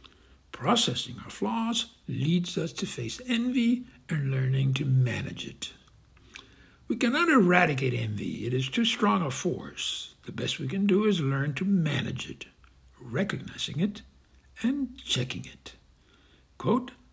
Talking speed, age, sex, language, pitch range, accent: 135 wpm, 60-79, male, English, 125-210 Hz, American